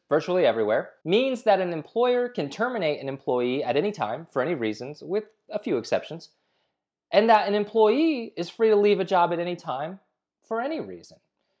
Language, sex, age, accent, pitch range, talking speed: English, male, 30-49, American, 130-200 Hz, 185 wpm